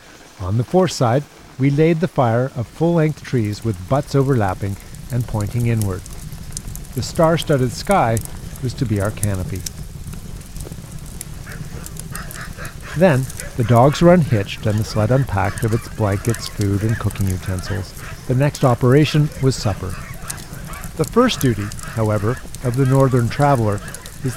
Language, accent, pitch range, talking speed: English, American, 110-145 Hz, 135 wpm